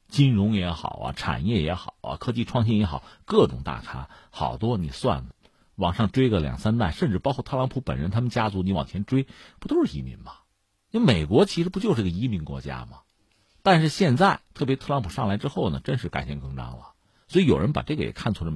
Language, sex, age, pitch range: Chinese, male, 50-69, 80-125 Hz